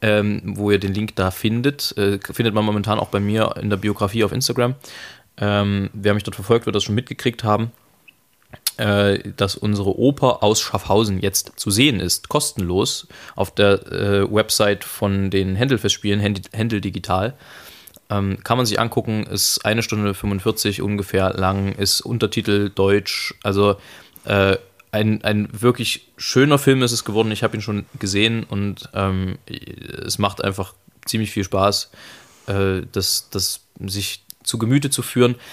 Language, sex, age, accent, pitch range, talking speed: German, male, 20-39, German, 100-115 Hz, 155 wpm